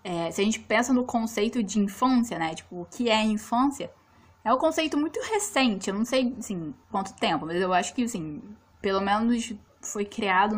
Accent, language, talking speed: Brazilian, Portuguese, 200 wpm